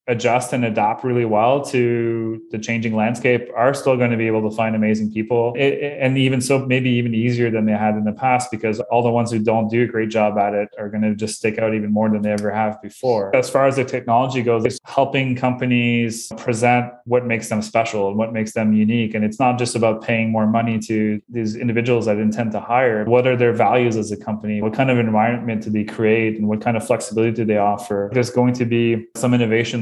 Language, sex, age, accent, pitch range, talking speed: English, male, 20-39, Canadian, 110-120 Hz, 240 wpm